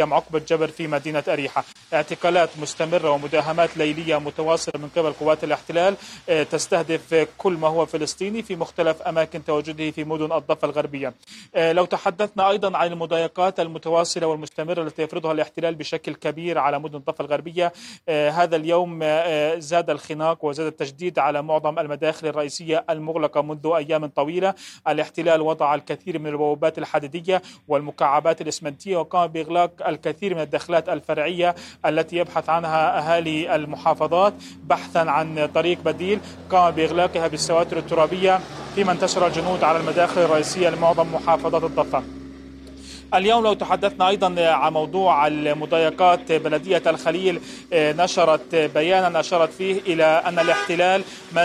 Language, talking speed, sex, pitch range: Arabic, 130 wpm, male, 155-175 Hz